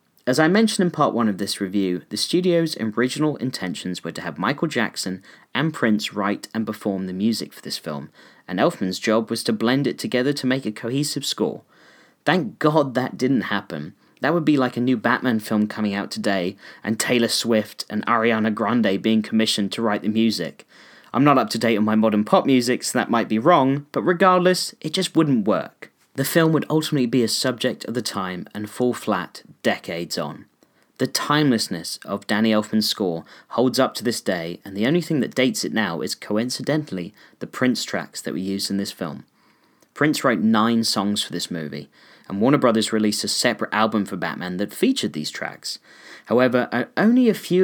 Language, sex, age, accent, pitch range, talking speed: English, male, 30-49, British, 105-130 Hz, 200 wpm